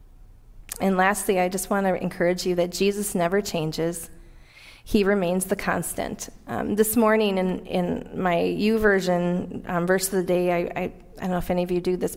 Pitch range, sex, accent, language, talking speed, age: 170-200 Hz, female, American, English, 195 wpm, 30-49